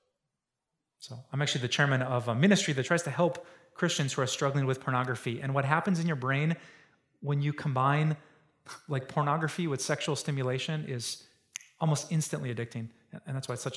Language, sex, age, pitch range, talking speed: English, male, 30-49, 135-175 Hz, 180 wpm